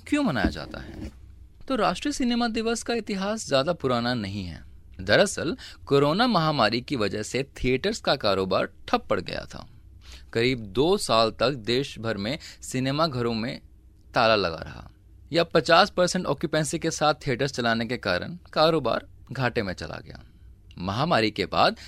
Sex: male